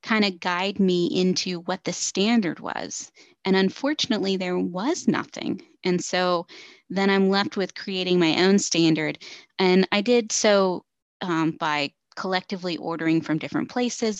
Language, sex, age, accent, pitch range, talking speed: English, female, 20-39, American, 175-210 Hz, 150 wpm